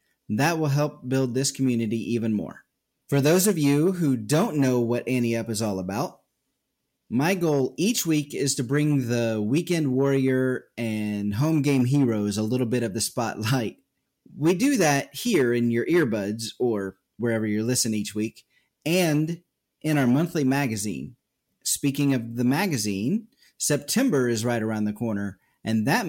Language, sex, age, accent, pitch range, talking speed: English, male, 30-49, American, 115-150 Hz, 165 wpm